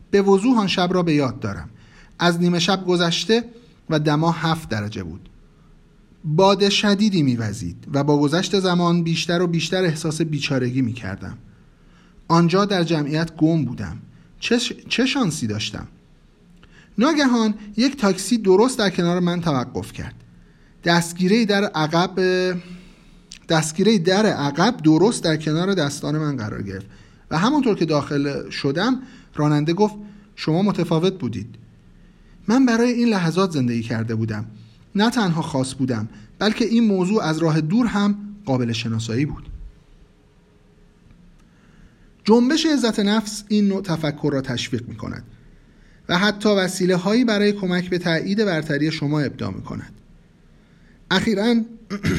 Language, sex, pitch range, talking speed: Persian, male, 145-205 Hz, 135 wpm